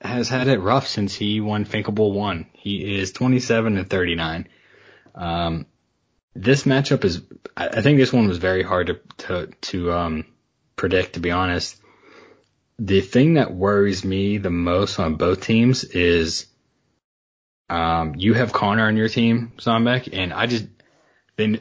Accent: American